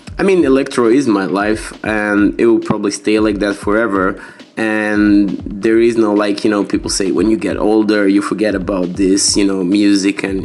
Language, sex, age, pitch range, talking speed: English, male, 20-39, 100-110 Hz, 200 wpm